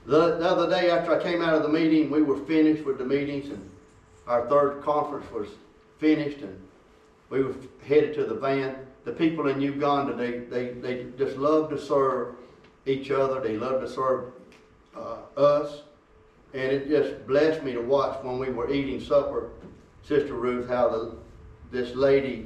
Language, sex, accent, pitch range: English, male, American, 110-140 Hz